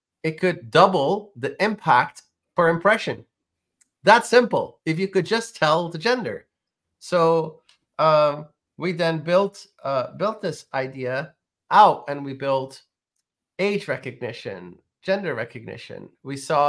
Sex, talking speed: male, 125 wpm